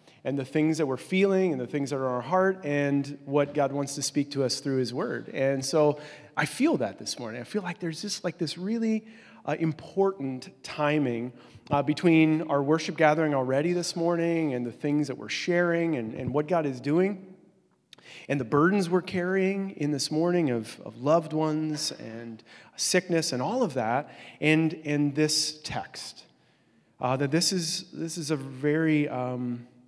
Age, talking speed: 30-49, 190 wpm